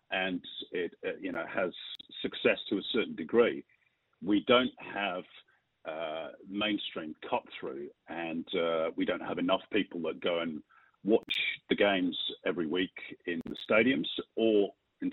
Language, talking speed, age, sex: English, 145 wpm, 50-69, male